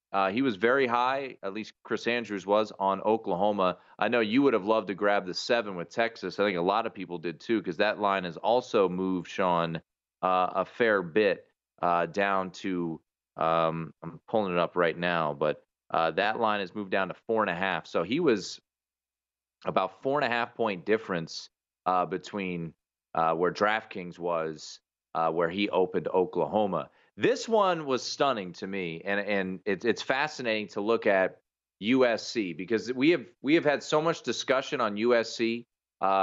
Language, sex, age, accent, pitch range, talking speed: English, male, 30-49, American, 85-115 Hz, 185 wpm